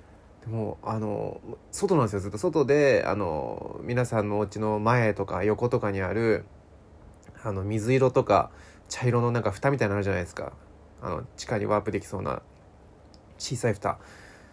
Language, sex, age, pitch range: Japanese, male, 20-39, 100-150 Hz